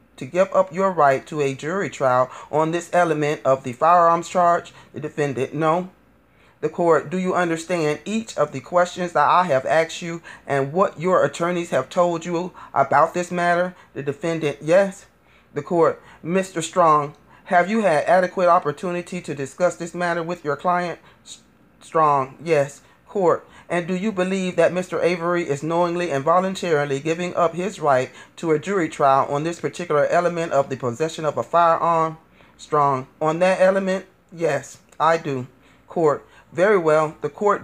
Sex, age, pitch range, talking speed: male, 40-59, 145-180 Hz, 165 wpm